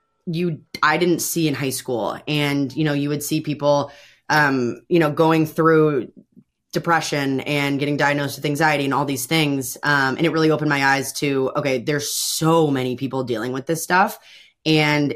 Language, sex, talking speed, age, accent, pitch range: English, female, 185 wpm, 20-39, American, 135-155 Hz